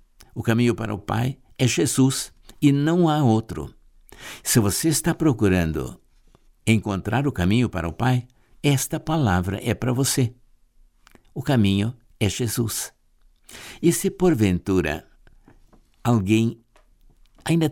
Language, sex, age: Portuguese, male, 60-79